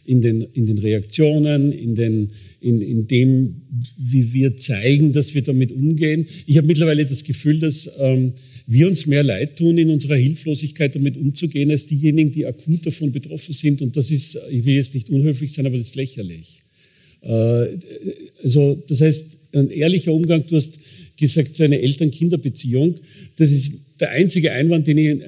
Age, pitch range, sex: 50-69, 130-155 Hz, male